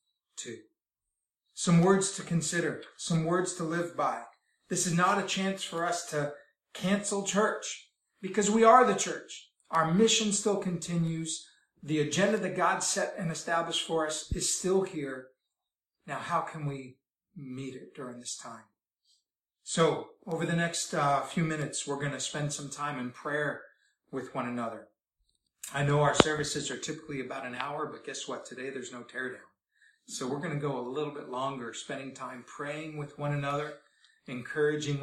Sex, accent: male, American